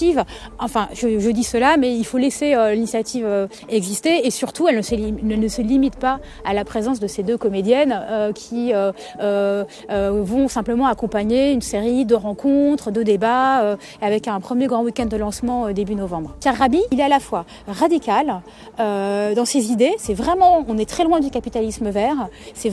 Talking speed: 205 wpm